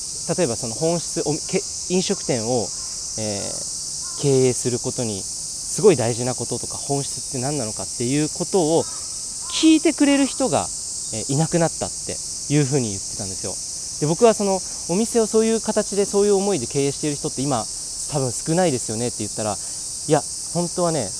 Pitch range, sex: 110-160 Hz, male